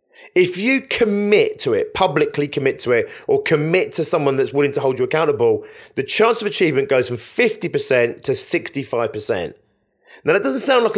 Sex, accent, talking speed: male, British, 180 wpm